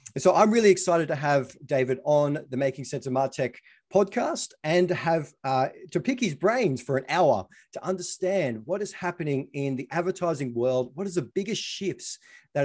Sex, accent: male, Australian